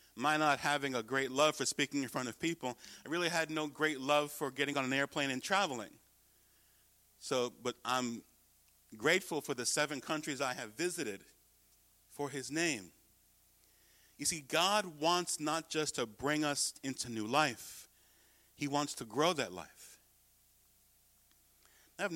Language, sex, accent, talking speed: English, male, American, 155 wpm